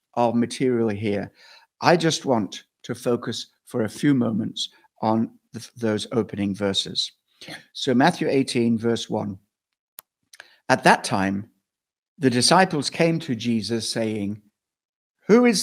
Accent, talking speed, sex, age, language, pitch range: British, 125 wpm, male, 60-79, English, 115-145 Hz